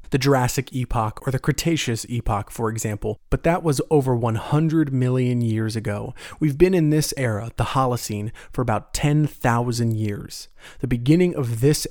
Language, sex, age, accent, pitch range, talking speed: English, male, 30-49, American, 110-135 Hz, 160 wpm